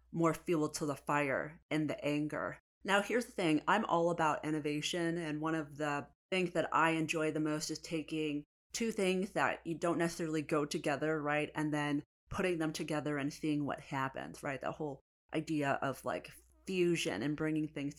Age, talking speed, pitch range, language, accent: 30-49, 185 wpm, 150-170 Hz, English, American